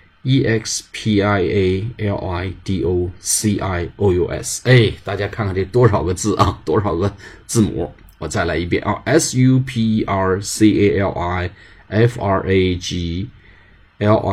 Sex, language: male, Chinese